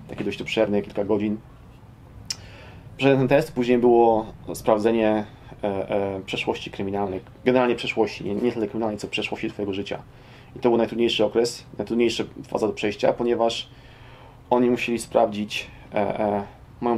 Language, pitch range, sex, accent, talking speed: Polish, 105-125 Hz, male, native, 140 wpm